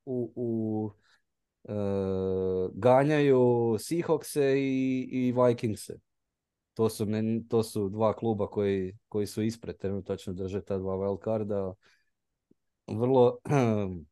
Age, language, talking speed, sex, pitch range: 20-39, Croatian, 110 wpm, male, 100-130 Hz